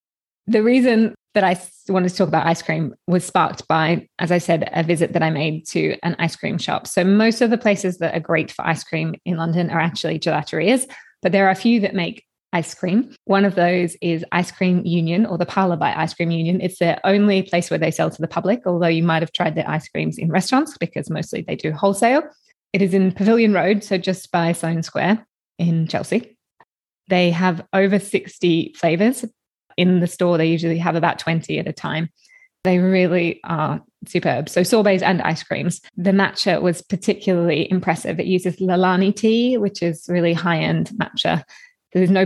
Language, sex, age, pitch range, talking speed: English, female, 20-39, 170-200 Hz, 205 wpm